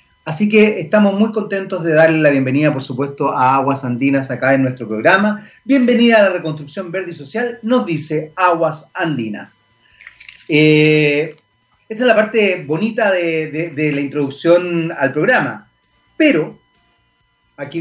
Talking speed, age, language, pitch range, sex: 150 wpm, 40-59, Spanish, 145-205 Hz, male